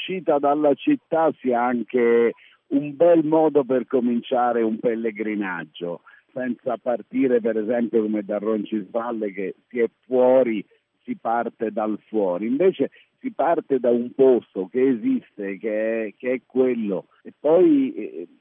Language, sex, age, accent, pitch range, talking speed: Italian, male, 50-69, native, 110-140 Hz, 140 wpm